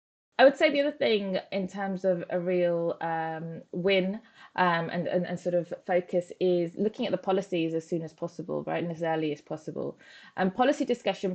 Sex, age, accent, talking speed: female, 20-39, British, 205 wpm